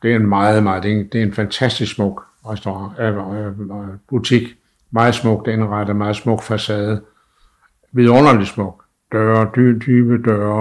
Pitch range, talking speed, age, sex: 105-125 Hz, 160 wpm, 60-79, male